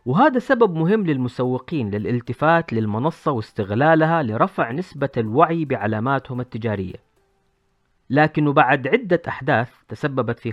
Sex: female